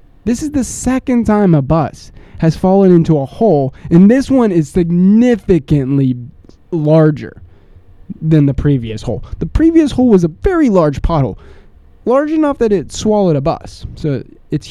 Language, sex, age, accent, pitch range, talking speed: English, male, 20-39, American, 135-205 Hz, 160 wpm